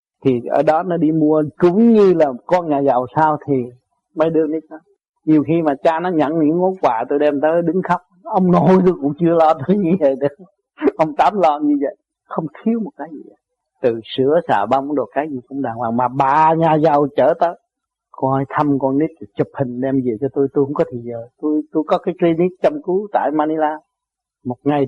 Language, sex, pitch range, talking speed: Vietnamese, male, 140-180 Hz, 230 wpm